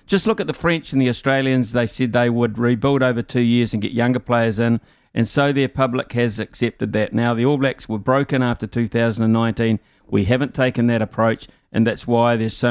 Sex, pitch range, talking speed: male, 115-130 Hz, 215 wpm